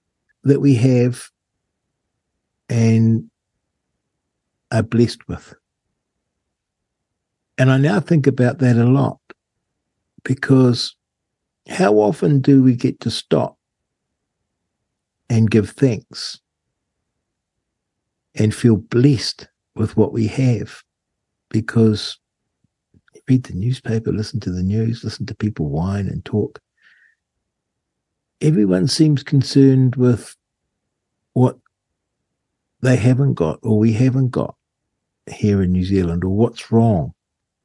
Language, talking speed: English, 105 wpm